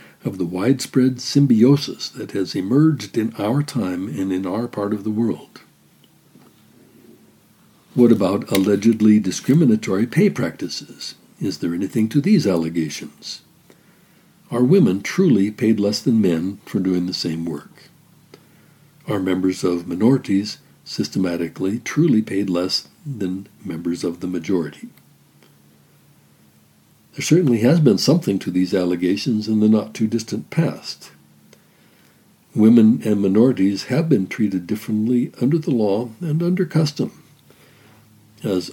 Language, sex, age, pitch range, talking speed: English, male, 60-79, 90-135 Hz, 125 wpm